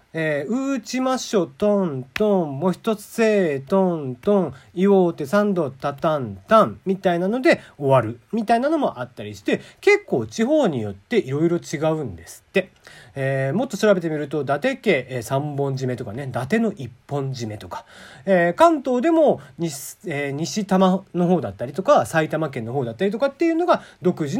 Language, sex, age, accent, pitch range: Japanese, male, 40-59, native, 130-220 Hz